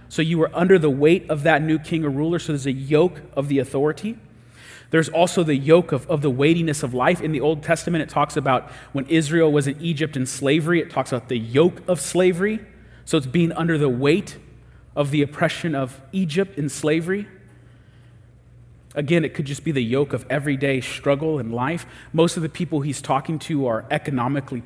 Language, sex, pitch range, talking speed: English, male, 125-160 Hz, 205 wpm